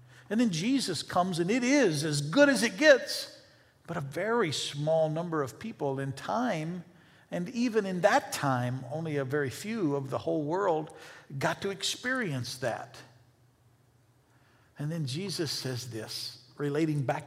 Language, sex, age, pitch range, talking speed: English, male, 50-69, 125-170 Hz, 155 wpm